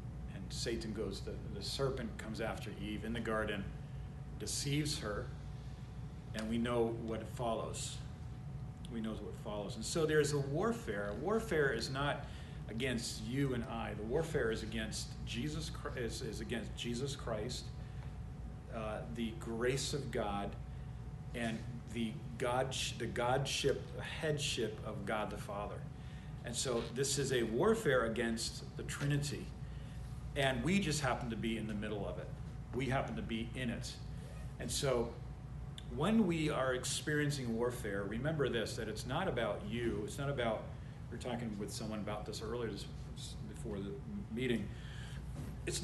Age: 40-59